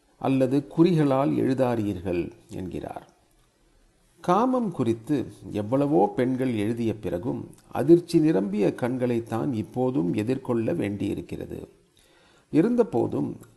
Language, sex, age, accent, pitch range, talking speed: Tamil, male, 40-59, native, 115-155 Hz, 75 wpm